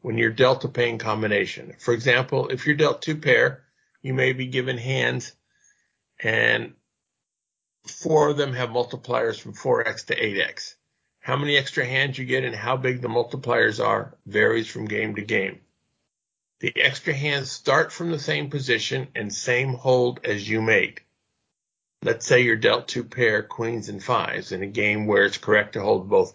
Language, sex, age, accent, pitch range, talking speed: English, male, 50-69, American, 115-140 Hz, 175 wpm